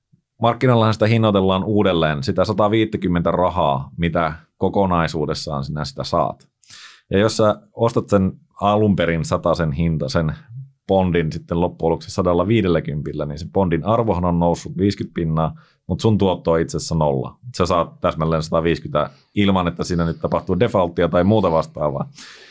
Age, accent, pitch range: 30-49, native, 80-105 Hz